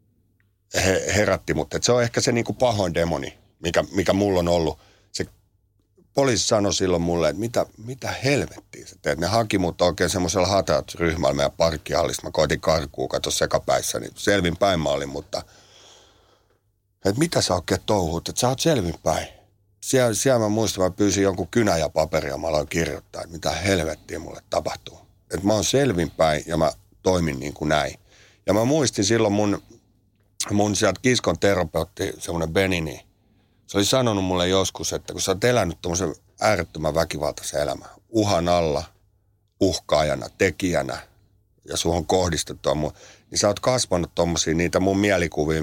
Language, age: Finnish, 60-79